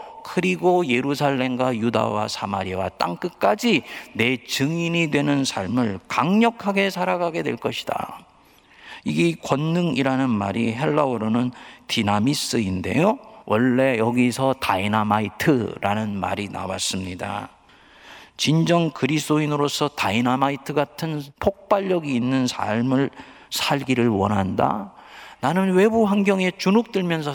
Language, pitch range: Korean, 115-185 Hz